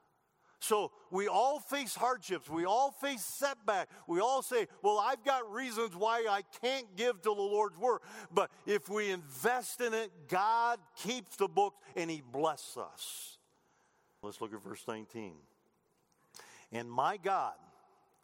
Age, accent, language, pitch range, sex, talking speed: 50-69, American, English, 150-240 Hz, male, 150 wpm